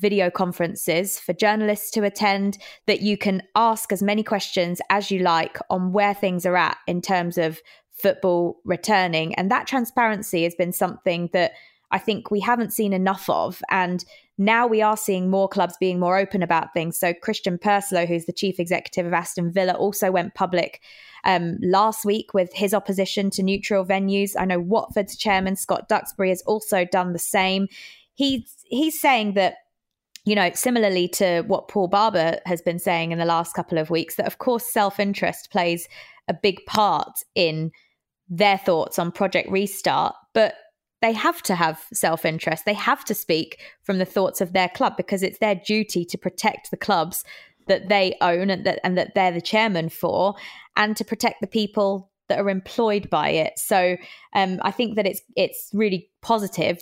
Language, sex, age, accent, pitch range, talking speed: English, female, 20-39, British, 180-210 Hz, 185 wpm